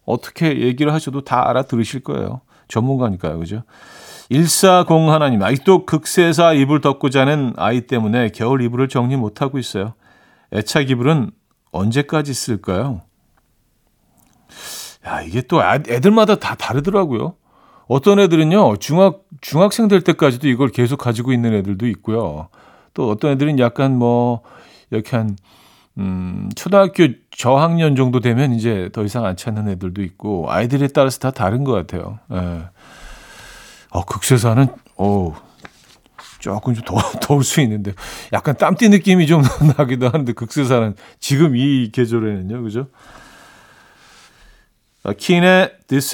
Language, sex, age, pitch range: Korean, male, 50-69, 110-150 Hz